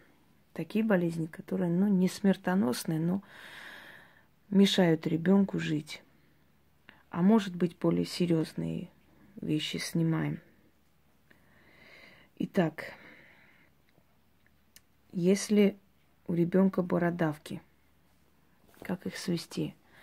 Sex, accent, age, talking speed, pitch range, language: female, native, 30-49, 75 wpm, 155-185 Hz, Russian